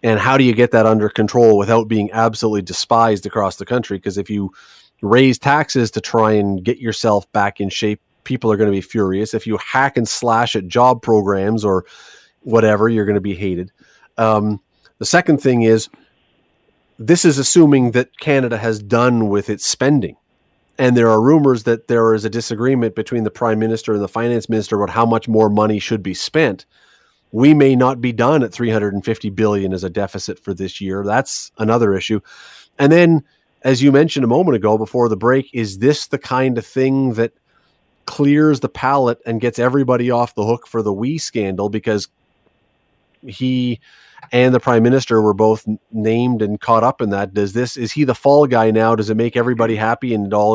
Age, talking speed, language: 30-49, 200 wpm, English